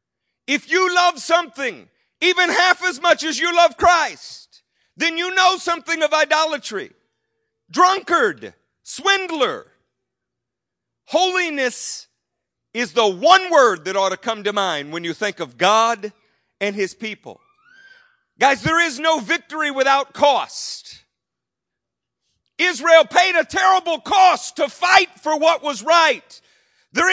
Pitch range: 280-365 Hz